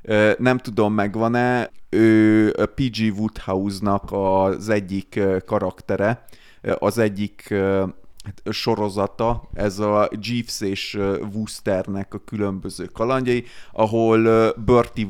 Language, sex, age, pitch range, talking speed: Hungarian, male, 30-49, 100-115 Hz, 85 wpm